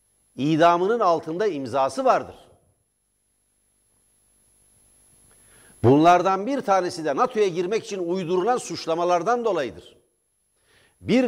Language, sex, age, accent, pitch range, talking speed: Turkish, male, 60-79, native, 120-175 Hz, 80 wpm